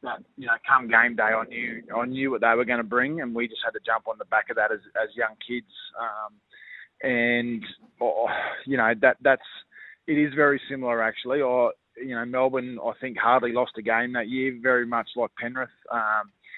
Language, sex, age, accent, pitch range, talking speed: English, male, 20-39, Australian, 115-130 Hz, 215 wpm